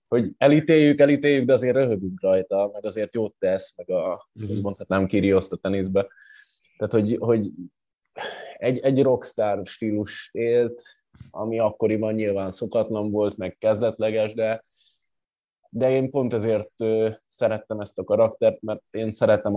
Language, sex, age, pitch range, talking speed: Hungarian, male, 20-39, 95-110 Hz, 135 wpm